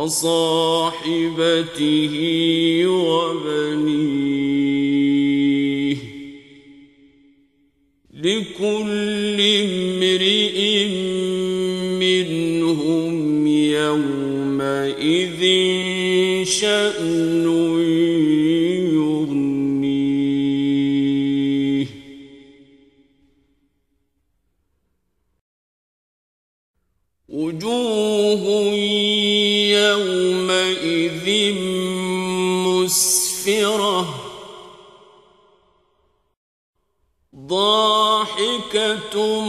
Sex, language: male, Turkish